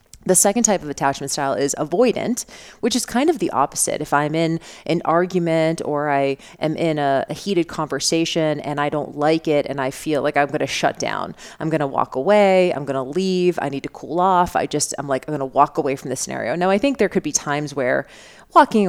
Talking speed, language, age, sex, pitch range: 240 wpm, English, 30-49, female, 150-210 Hz